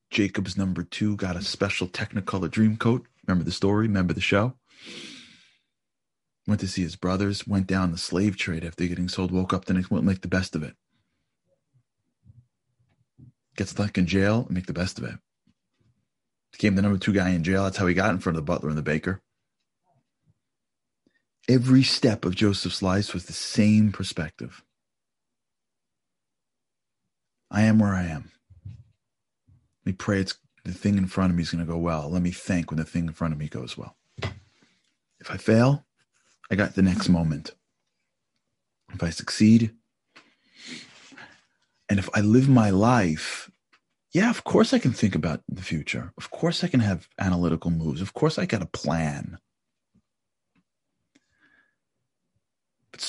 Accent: American